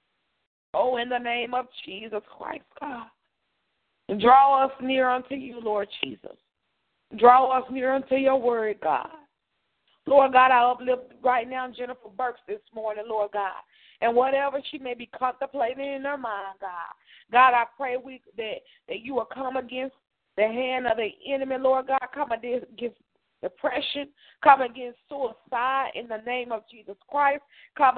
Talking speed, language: 160 wpm, English